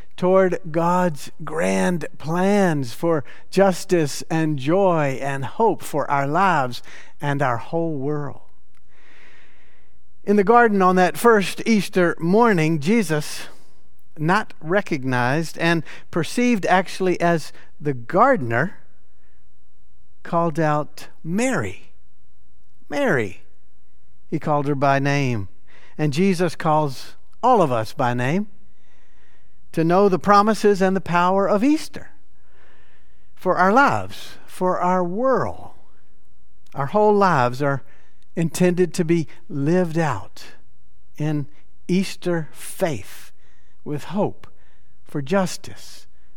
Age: 50-69